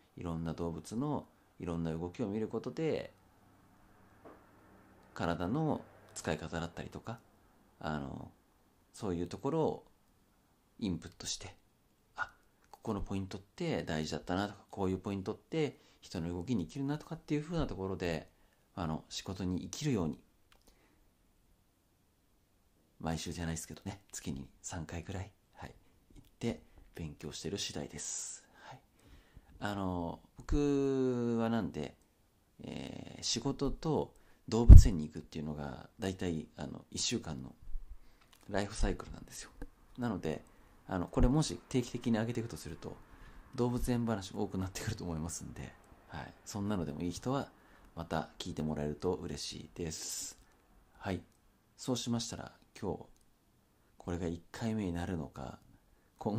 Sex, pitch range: male, 80-110 Hz